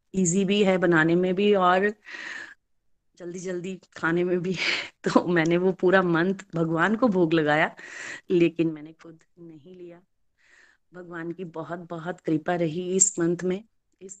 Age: 20-39